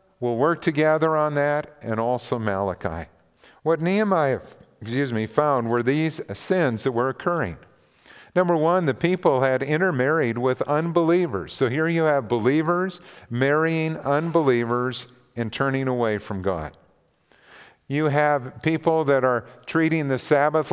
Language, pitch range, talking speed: English, 120-160 Hz, 135 wpm